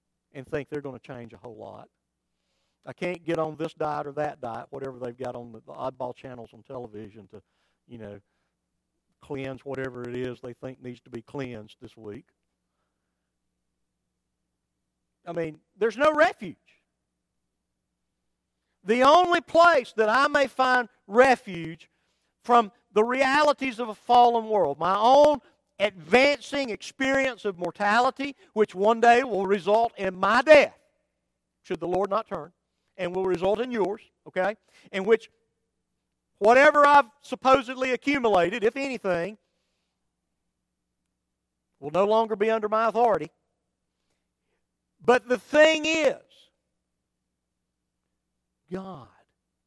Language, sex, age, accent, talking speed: English, male, 50-69, American, 130 wpm